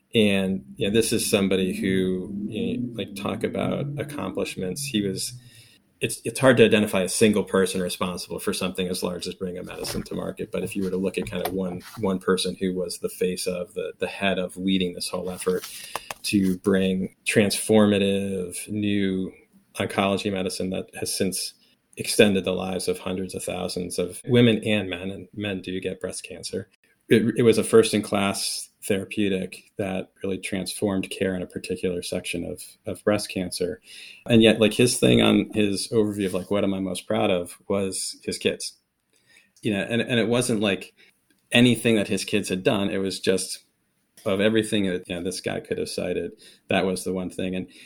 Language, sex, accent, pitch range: English, male, American, 95-105 Hz